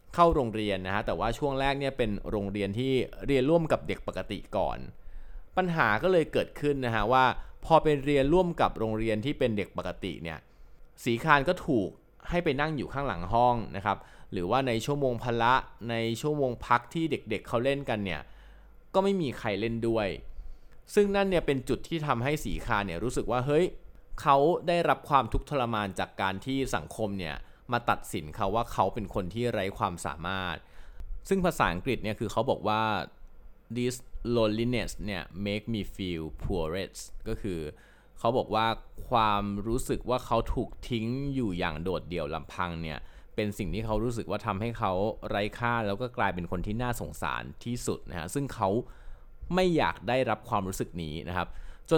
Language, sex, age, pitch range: Thai, male, 20-39, 95-130 Hz